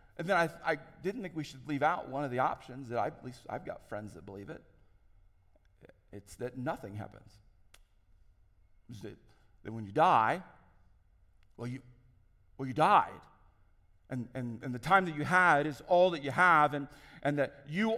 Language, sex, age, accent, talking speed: English, male, 40-59, American, 180 wpm